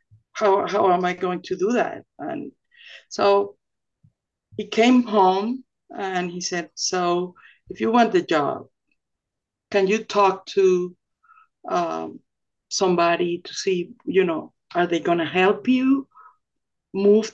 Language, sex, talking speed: English, female, 135 wpm